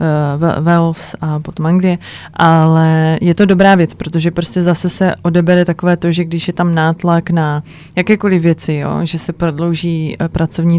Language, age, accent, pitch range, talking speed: Czech, 20-39, native, 165-195 Hz, 165 wpm